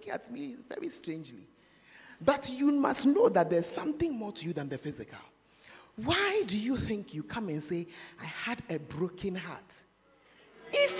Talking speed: 170 wpm